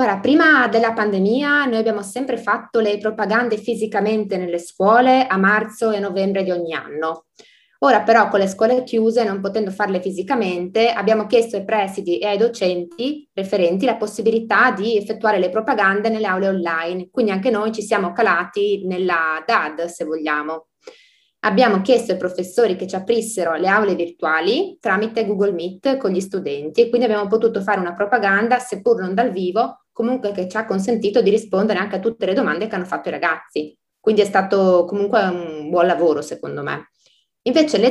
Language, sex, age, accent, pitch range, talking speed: Italian, female, 20-39, native, 180-225 Hz, 175 wpm